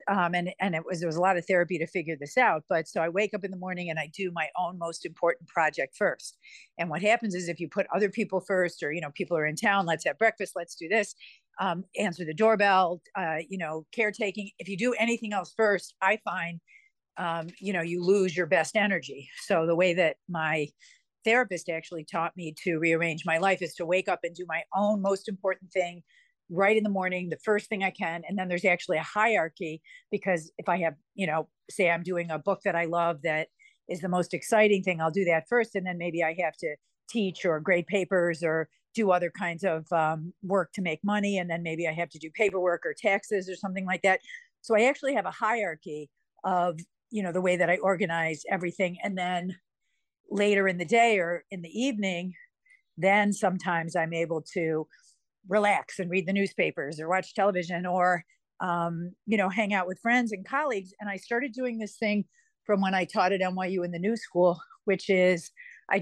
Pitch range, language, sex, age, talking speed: 170-205 Hz, English, female, 50-69, 220 wpm